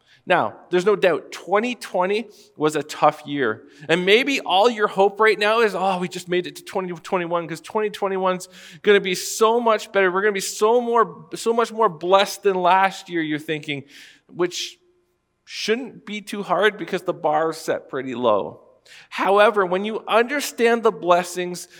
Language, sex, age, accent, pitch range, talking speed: English, male, 40-59, American, 175-215 Hz, 180 wpm